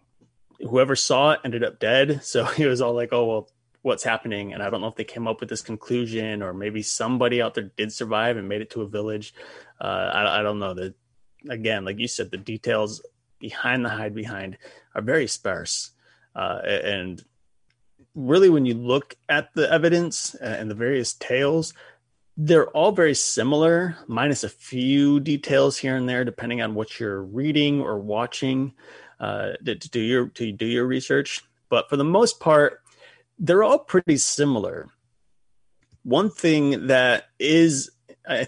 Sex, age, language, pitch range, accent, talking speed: male, 30-49, English, 110-135 Hz, American, 170 wpm